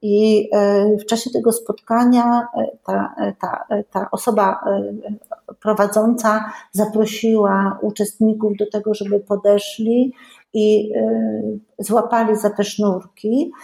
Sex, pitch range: female, 205-230 Hz